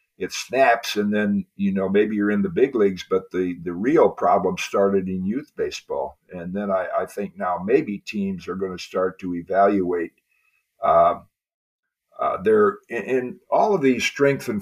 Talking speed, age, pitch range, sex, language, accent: 175 wpm, 50-69, 95-125 Hz, male, English, American